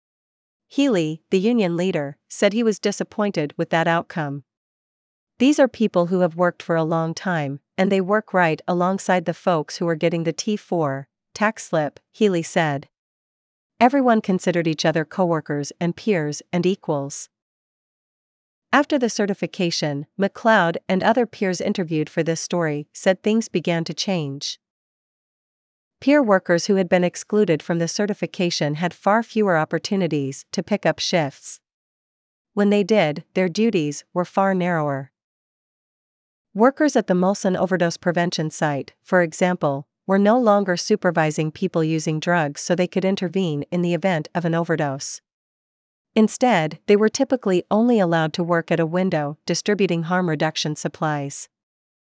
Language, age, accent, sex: English, 40-59, American, female